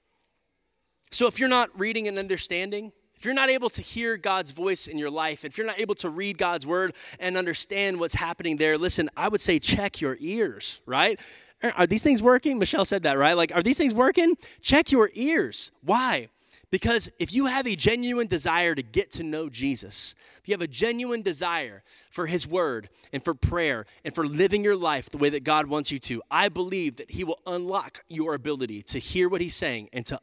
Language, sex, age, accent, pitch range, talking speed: English, male, 20-39, American, 155-240 Hz, 210 wpm